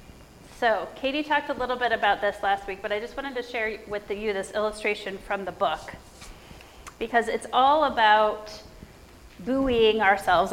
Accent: American